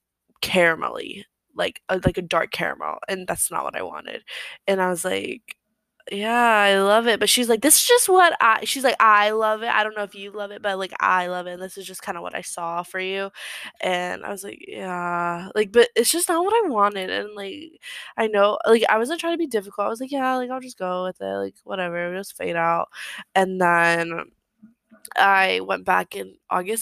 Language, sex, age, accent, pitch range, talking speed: English, female, 20-39, American, 175-225 Hz, 230 wpm